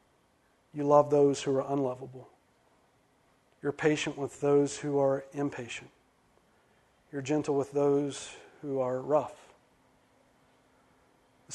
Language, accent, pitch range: English, American, 140-165 Hz